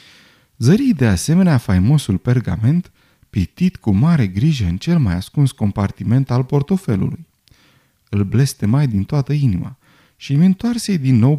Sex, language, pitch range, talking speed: male, Romanian, 105-155 Hz, 130 wpm